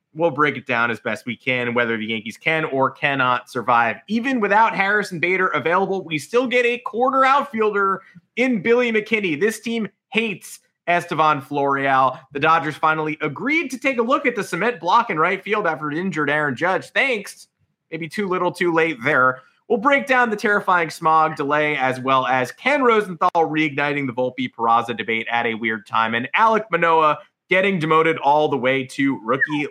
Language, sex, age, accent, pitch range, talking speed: English, male, 30-49, American, 130-210 Hz, 185 wpm